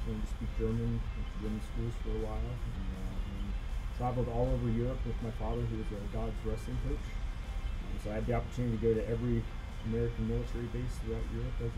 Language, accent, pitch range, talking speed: English, American, 105-120 Hz, 215 wpm